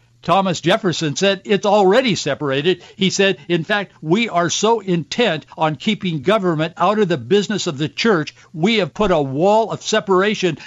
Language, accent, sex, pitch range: English, American, male, 120-180 Hz